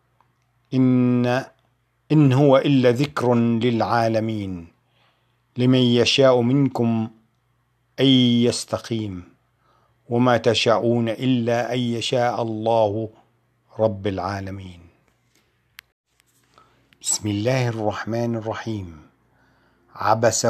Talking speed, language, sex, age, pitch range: 70 wpm, Arabic, male, 50-69, 110-120 Hz